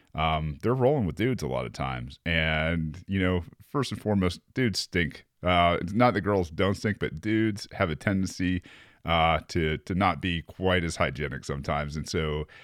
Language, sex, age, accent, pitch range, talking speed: English, male, 30-49, American, 80-105 Hz, 190 wpm